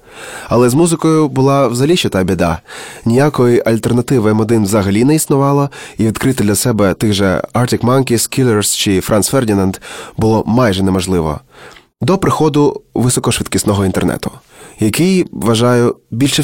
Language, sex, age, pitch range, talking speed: Ukrainian, male, 20-39, 100-130 Hz, 130 wpm